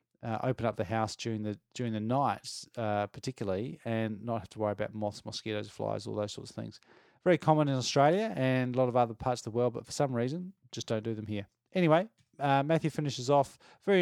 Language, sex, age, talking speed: English, male, 30-49, 230 wpm